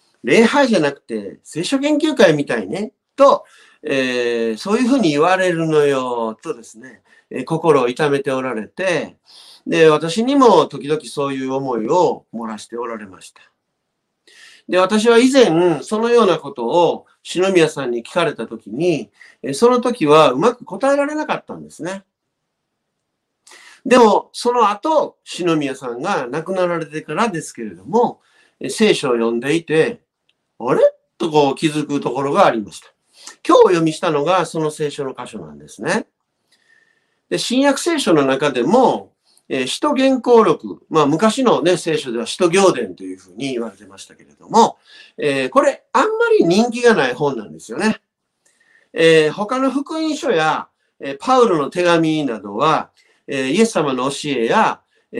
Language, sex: Japanese, male